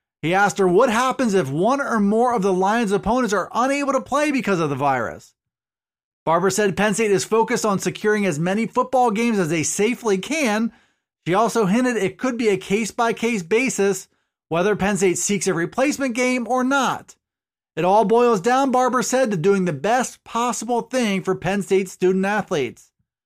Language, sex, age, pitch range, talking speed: English, male, 30-49, 190-245 Hz, 185 wpm